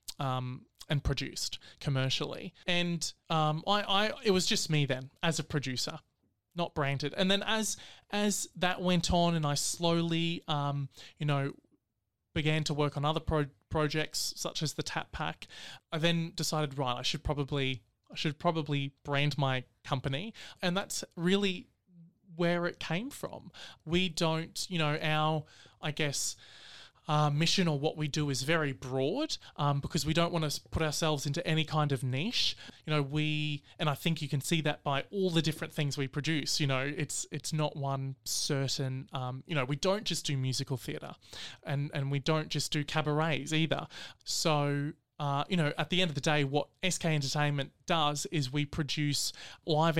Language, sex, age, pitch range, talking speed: English, male, 20-39, 140-165 Hz, 175 wpm